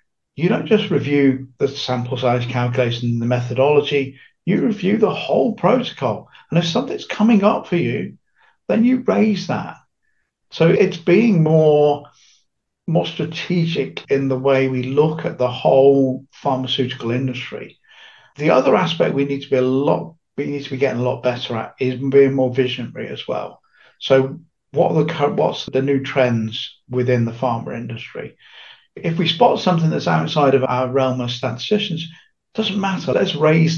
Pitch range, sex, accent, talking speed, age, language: 130-175 Hz, male, British, 165 wpm, 50-69, English